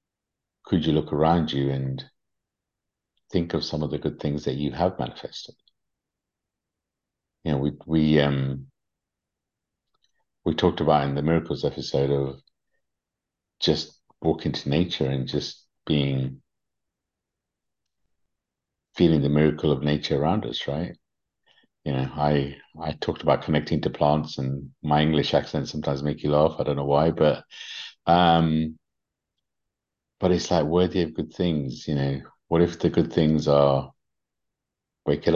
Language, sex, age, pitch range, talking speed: English, male, 50-69, 70-80 Hz, 145 wpm